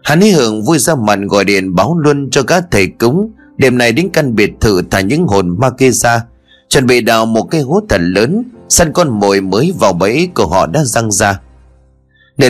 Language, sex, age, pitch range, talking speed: Vietnamese, male, 30-49, 90-145 Hz, 220 wpm